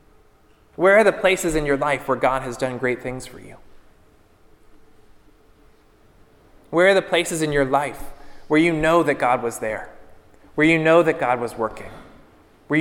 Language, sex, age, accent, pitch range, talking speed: English, male, 30-49, American, 120-160 Hz, 175 wpm